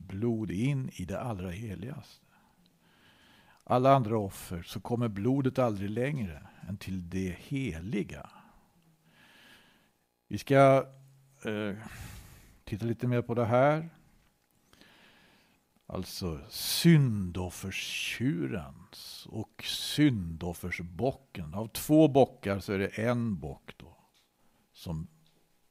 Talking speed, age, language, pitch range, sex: 95 wpm, 60-79, Swedish, 90-130 Hz, male